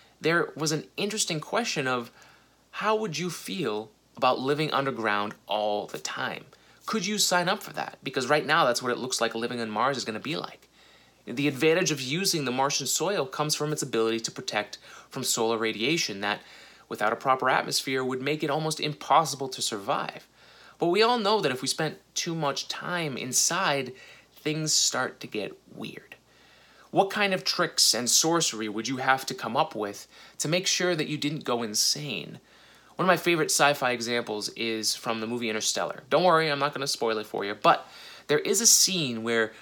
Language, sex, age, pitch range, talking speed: English, male, 20-39, 115-155 Hz, 200 wpm